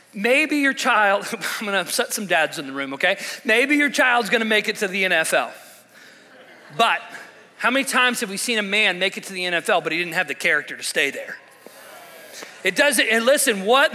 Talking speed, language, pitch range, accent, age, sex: 220 wpm, English, 160-250 Hz, American, 40-59, male